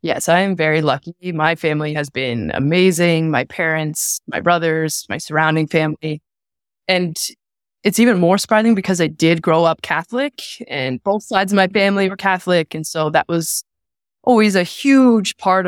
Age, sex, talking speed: 20-39, female, 170 wpm